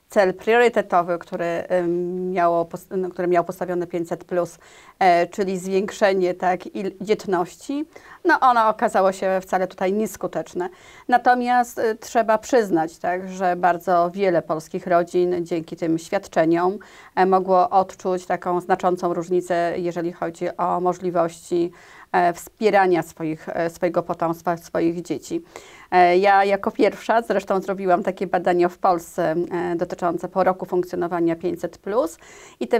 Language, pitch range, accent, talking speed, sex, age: Polish, 175-195 Hz, native, 110 wpm, female, 30-49